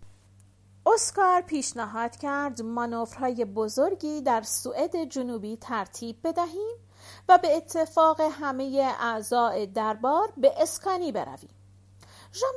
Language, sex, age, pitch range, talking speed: Persian, female, 40-59, 215-320 Hz, 95 wpm